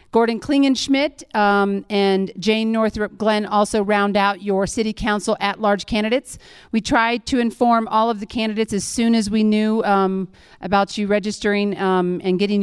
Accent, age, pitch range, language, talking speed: American, 40-59, 185-225 Hz, English, 165 wpm